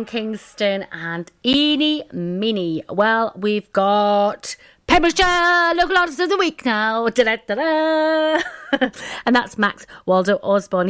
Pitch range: 175-245 Hz